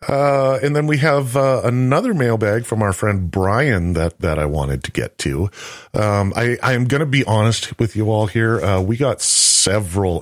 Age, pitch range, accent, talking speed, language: 40-59, 90-120 Hz, American, 205 wpm, English